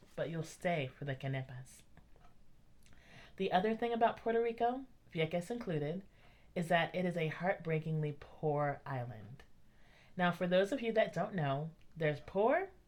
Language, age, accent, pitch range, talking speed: English, 30-49, American, 140-180 Hz, 150 wpm